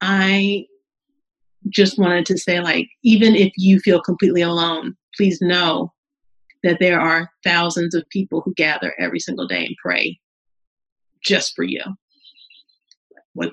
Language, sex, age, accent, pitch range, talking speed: English, female, 30-49, American, 170-210 Hz, 140 wpm